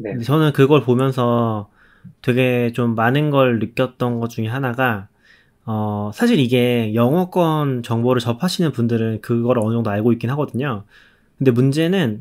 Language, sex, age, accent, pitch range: Korean, male, 20-39, native, 115-155 Hz